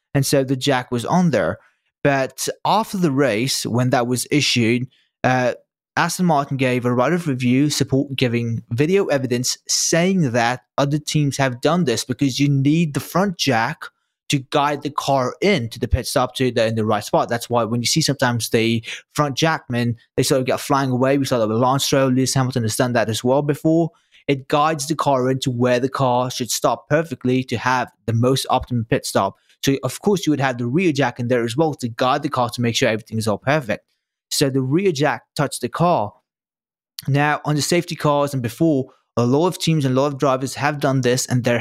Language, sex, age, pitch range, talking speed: English, male, 20-39, 120-145 Hz, 220 wpm